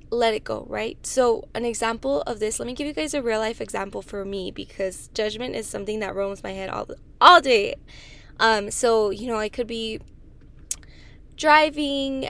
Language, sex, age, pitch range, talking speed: English, female, 10-29, 225-270 Hz, 190 wpm